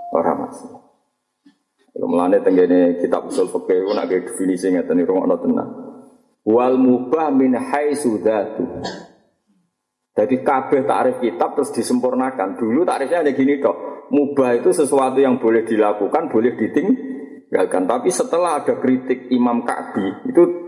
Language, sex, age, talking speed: Indonesian, male, 50-69, 130 wpm